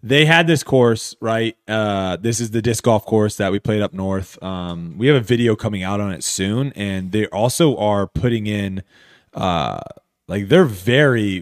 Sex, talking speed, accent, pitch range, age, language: male, 195 wpm, American, 95-110 Hz, 20-39, English